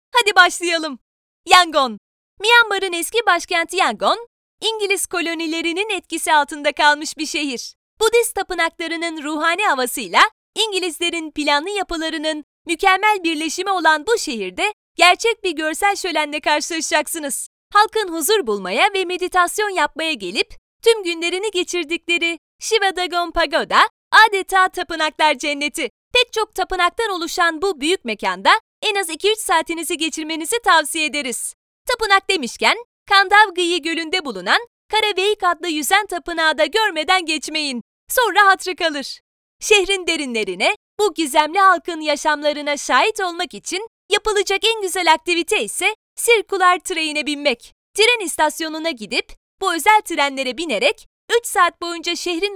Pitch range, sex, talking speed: 315-395 Hz, female, 120 wpm